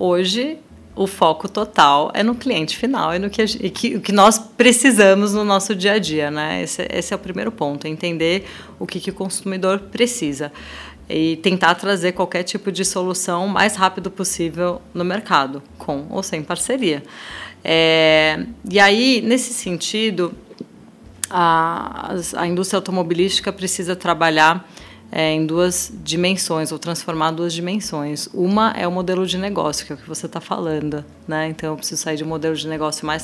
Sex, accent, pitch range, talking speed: female, Brazilian, 155-195 Hz, 175 wpm